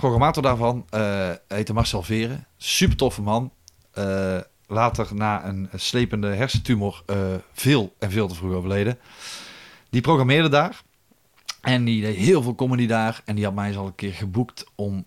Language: Dutch